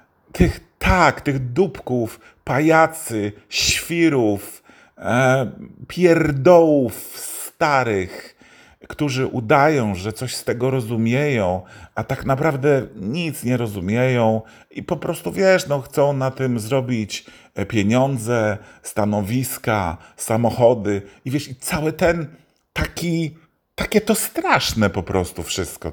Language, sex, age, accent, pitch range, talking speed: Polish, male, 40-59, native, 95-135 Hz, 105 wpm